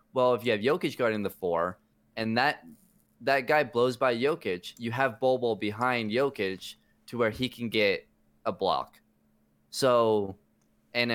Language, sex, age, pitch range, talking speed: English, male, 20-39, 95-125 Hz, 160 wpm